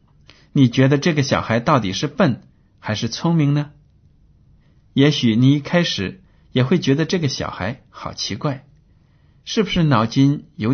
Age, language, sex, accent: 60-79, Chinese, male, native